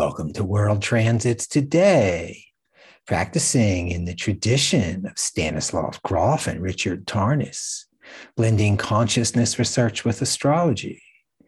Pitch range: 100-145 Hz